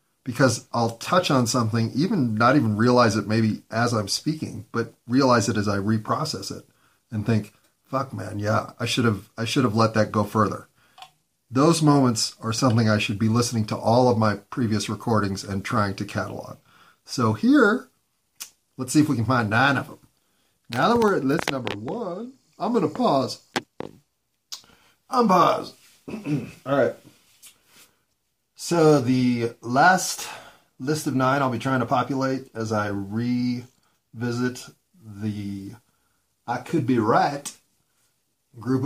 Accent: American